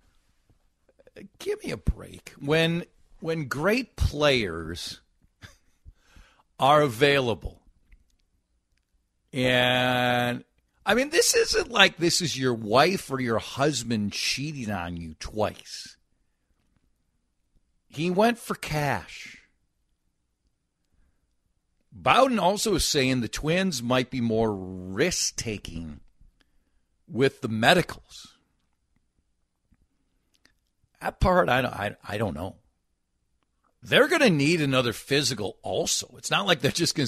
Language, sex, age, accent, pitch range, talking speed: English, male, 50-69, American, 95-155 Hz, 100 wpm